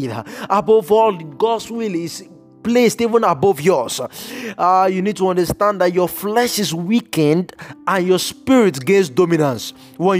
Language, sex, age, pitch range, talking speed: English, male, 20-39, 180-220 Hz, 145 wpm